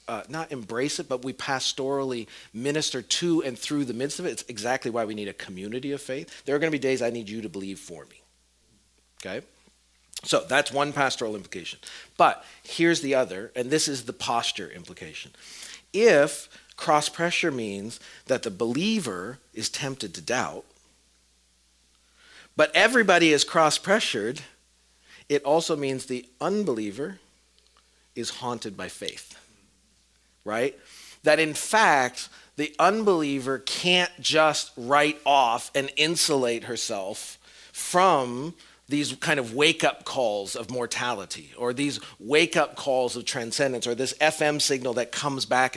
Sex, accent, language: male, American, English